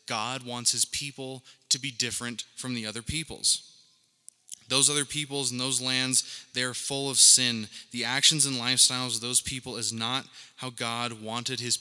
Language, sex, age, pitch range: English, male, 20-39, 115-130 Hz